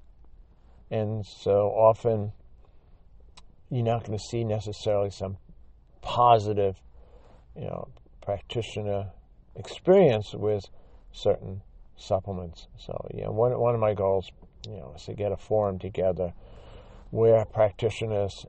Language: English